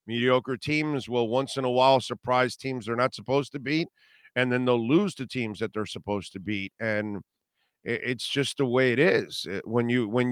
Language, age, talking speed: English, 50-69, 210 wpm